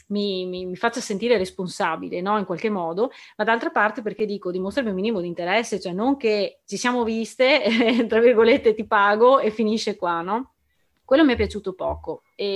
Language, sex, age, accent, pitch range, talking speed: Italian, female, 30-49, native, 190-240 Hz, 200 wpm